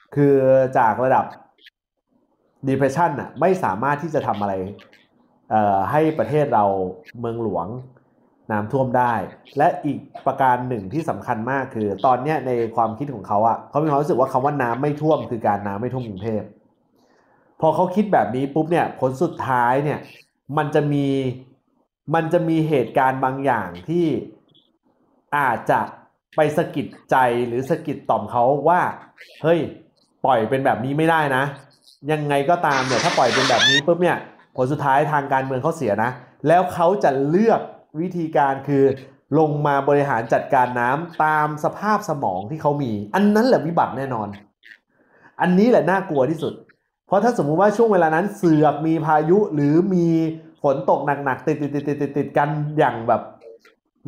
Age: 30-49